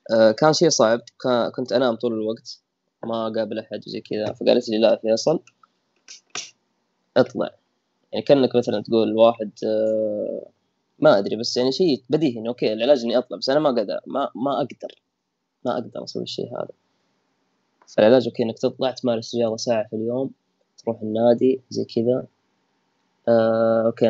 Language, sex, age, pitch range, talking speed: Arabic, female, 20-39, 110-125 Hz, 145 wpm